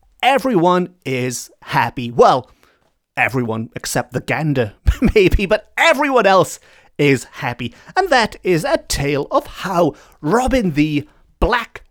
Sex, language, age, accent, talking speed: male, English, 30-49, British, 120 wpm